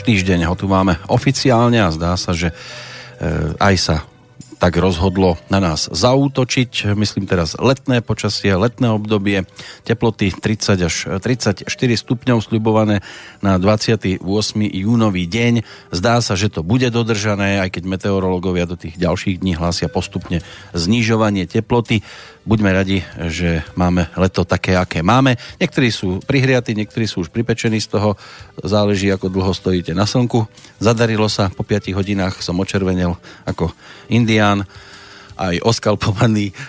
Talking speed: 135 wpm